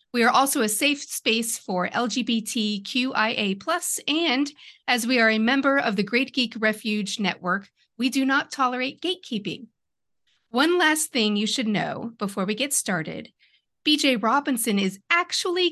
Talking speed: 150 wpm